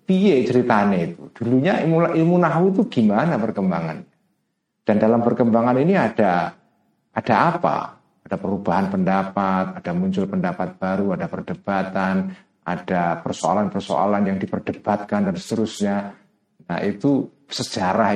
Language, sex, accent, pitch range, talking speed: Indonesian, male, native, 85-125 Hz, 115 wpm